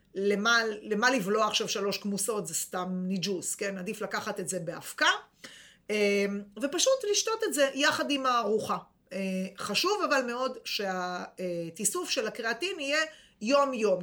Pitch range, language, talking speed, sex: 195-270 Hz, Hebrew, 130 wpm, female